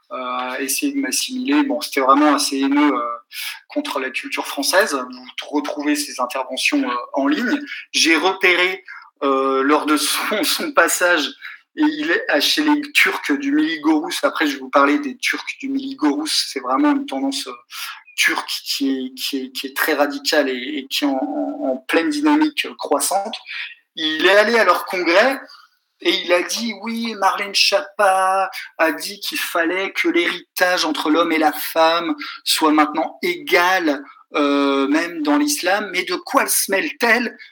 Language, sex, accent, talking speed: French, male, French, 175 wpm